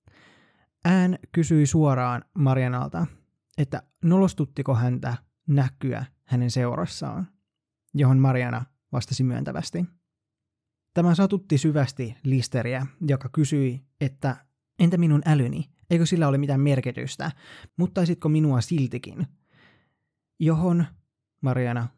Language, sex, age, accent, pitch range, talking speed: Finnish, male, 20-39, native, 125-160 Hz, 95 wpm